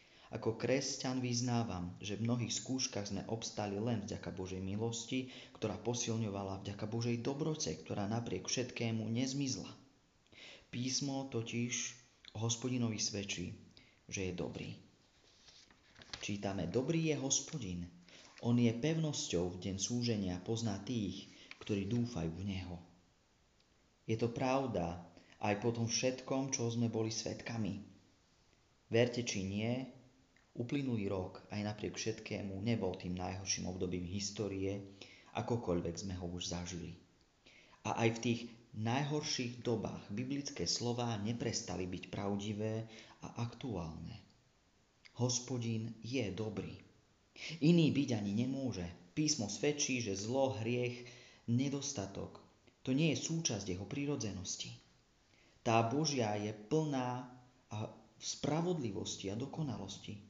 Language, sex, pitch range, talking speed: Slovak, male, 95-125 Hz, 115 wpm